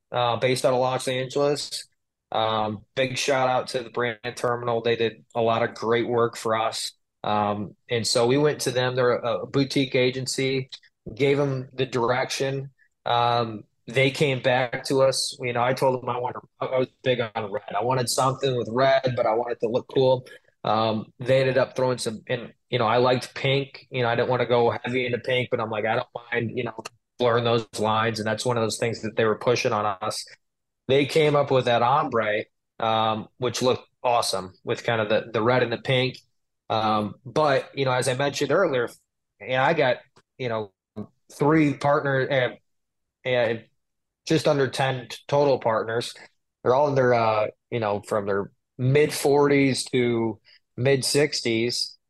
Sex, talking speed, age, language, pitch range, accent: male, 195 wpm, 20-39, English, 115-135 Hz, American